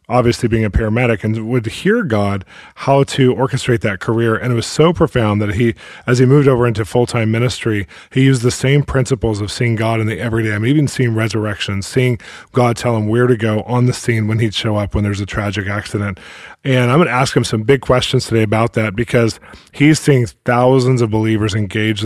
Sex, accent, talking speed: male, American, 220 wpm